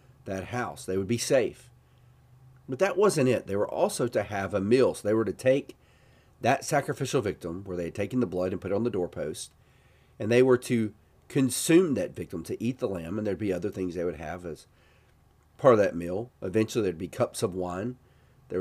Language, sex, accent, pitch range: English, male, American, 95-125 Hz